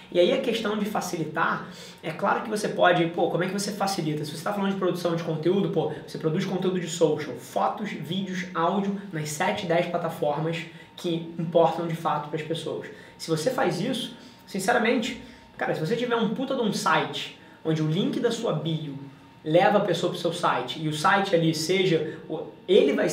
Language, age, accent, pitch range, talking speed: Portuguese, 20-39, Brazilian, 165-210 Hz, 205 wpm